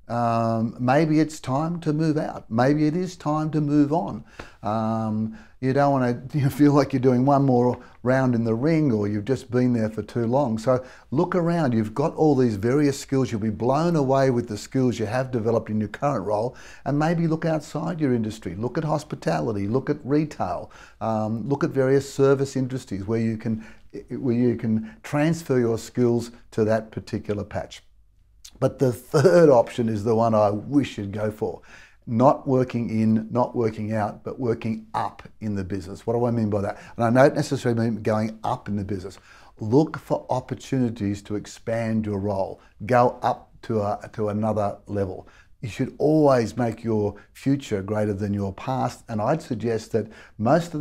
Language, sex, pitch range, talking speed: English, male, 110-140 Hz, 190 wpm